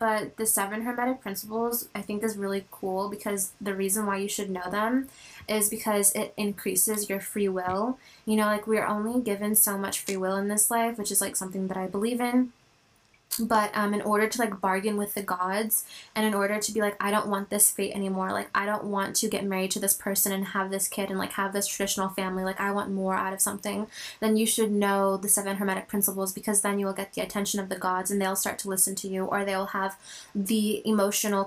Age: 10-29